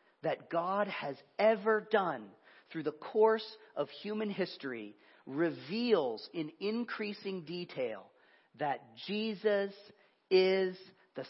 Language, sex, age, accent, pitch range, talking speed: English, male, 40-59, American, 150-205 Hz, 100 wpm